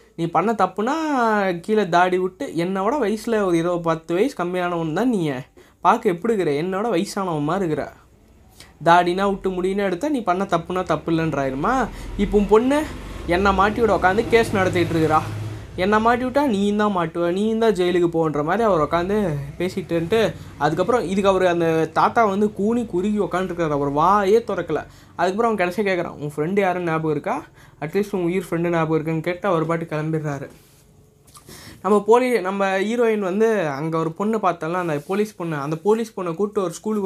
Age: 20-39